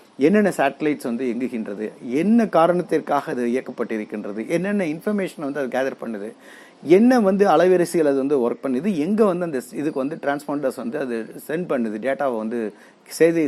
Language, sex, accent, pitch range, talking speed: Tamil, male, native, 130-195 Hz, 150 wpm